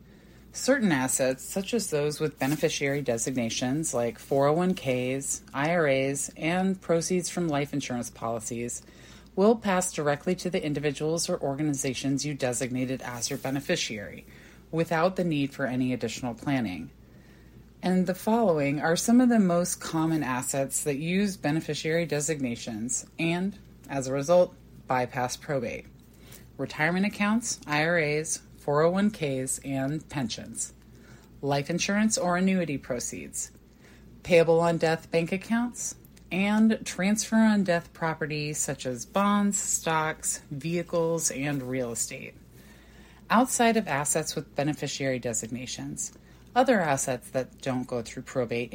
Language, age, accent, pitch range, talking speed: English, 20-39, American, 135-180 Hz, 115 wpm